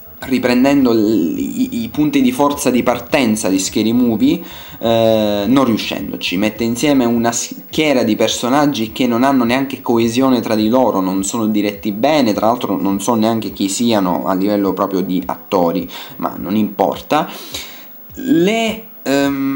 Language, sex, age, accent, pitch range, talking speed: Italian, male, 20-39, native, 110-160 Hz, 145 wpm